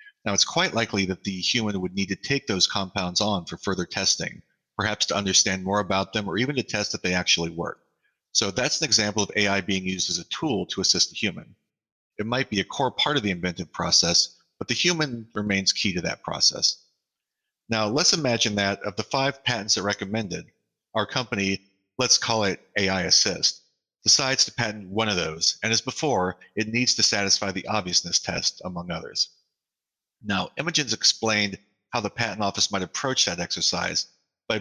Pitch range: 95-115 Hz